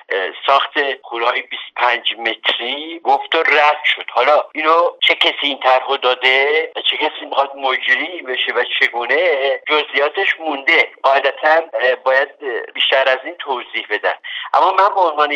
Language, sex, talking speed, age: Persian, male, 135 wpm, 50-69